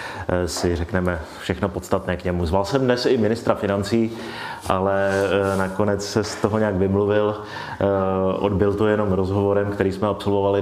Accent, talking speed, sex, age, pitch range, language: native, 145 wpm, male, 30-49, 90-105 Hz, Czech